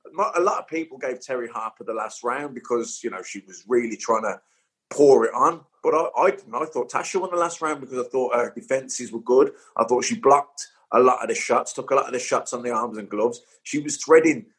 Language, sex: English, male